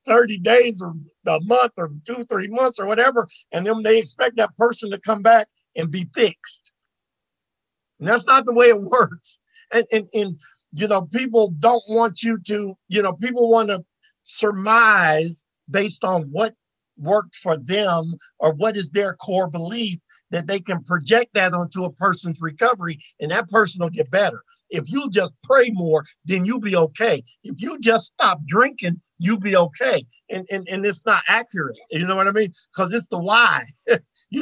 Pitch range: 170-230 Hz